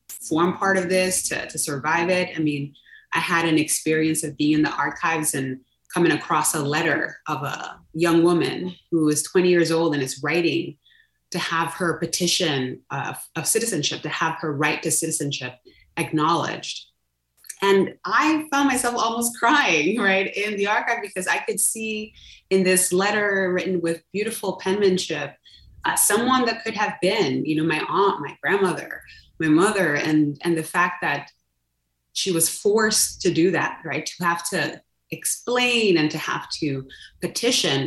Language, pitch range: English, 155-190 Hz